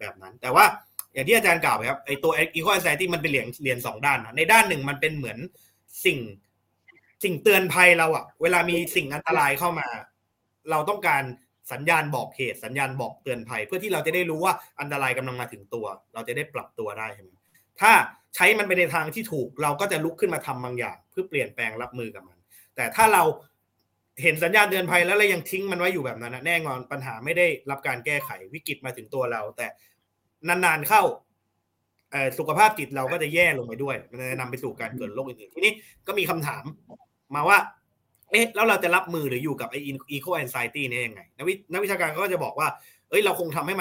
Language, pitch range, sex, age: Thai, 130-180 Hz, male, 20-39